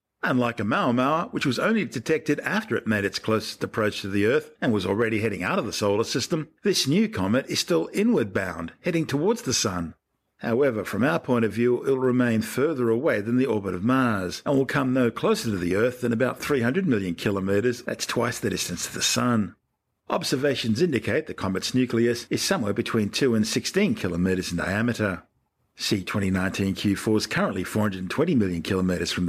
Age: 50-69